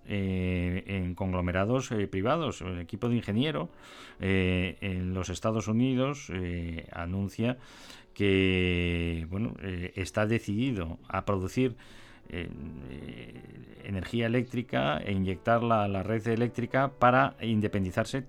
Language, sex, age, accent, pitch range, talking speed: Spanish, male, 40-59, Spanish, 90-115 Hz, 115 wpm